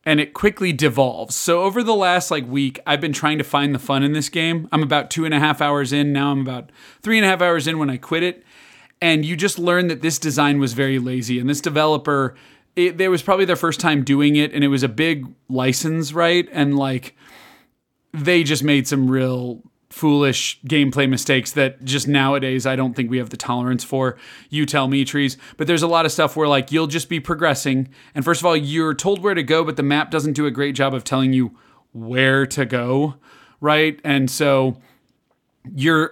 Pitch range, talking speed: 135-165 Hz, 225 wpm